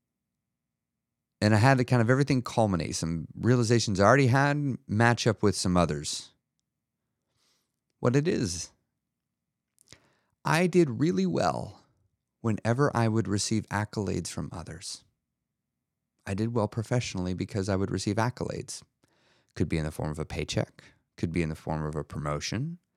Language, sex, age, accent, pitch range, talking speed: English, male, 30-49, American, 95-130 Hz, 150 wpm